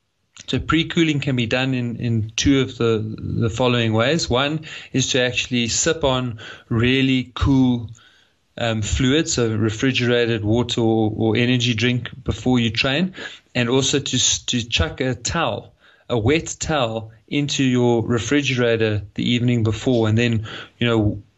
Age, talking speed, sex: 30-49, 150 wpm, male